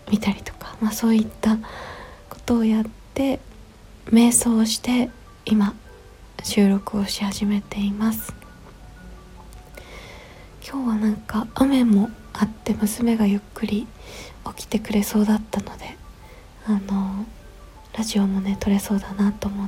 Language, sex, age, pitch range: Japanese, female, 20-39, 205-240 Hz